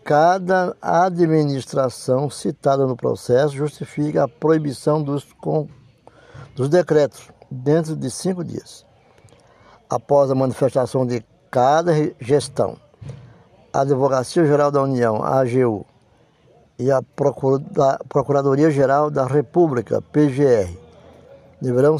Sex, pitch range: male, 125-150 Hz